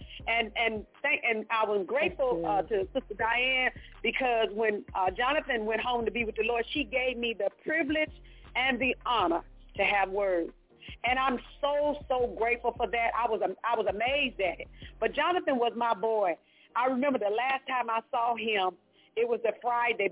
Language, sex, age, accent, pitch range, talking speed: English, female, 40-59, American, 220-265 Hz, 195 wpm